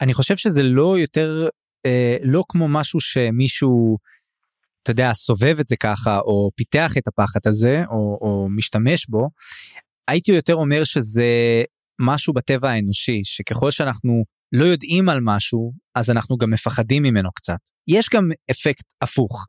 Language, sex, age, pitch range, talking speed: English, male, 20-39, 115-155 Hz, 135 wpm